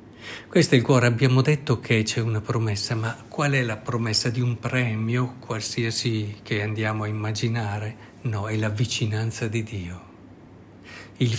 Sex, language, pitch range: male, Italian, 110-140 Hz